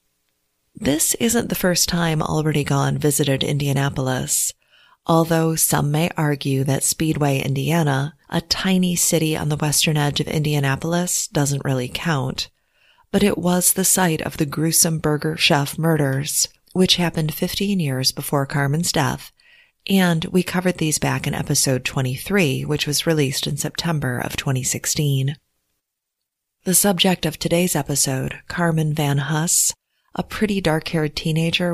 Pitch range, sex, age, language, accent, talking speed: 140-170 Hz, female, 30-49, English, American, 140 wpm